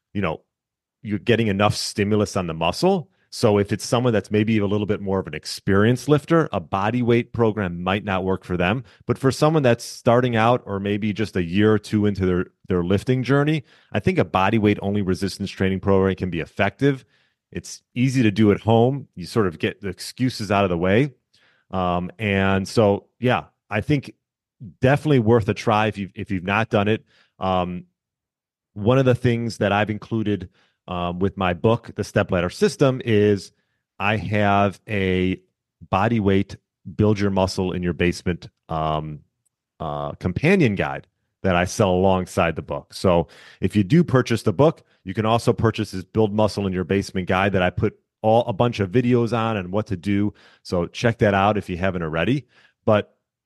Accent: American